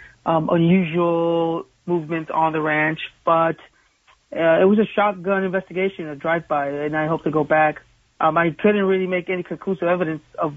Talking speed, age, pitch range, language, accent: 170 wpm, 30-49, 160-180 Hz, English, American